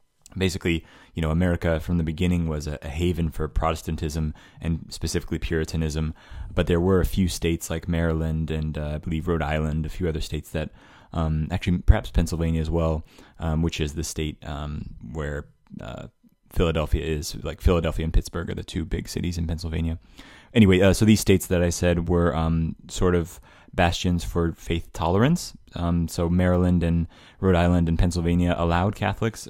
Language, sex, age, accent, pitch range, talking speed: English, male, 20-39, American, 80-90 Hz, 180 wpm